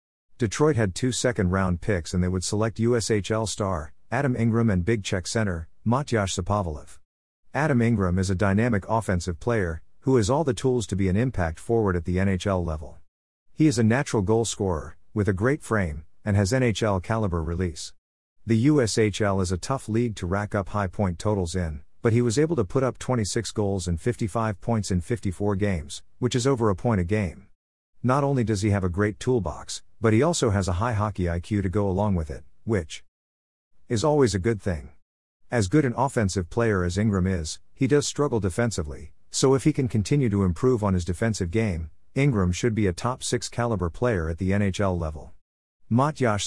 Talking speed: 200 wpm